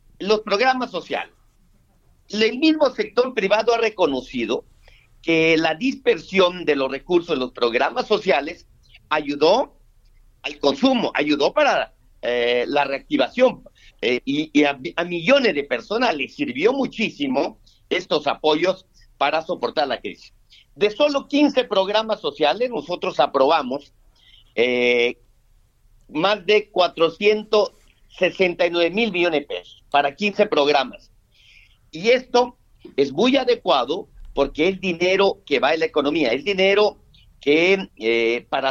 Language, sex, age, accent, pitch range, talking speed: Spanish, male, 50-69, Mexican, 135-220 Hz, 125 wpm